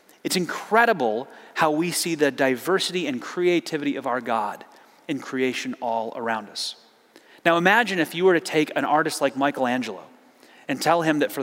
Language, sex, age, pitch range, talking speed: English, male, 30-49, 145-210 Hz, 175 wpm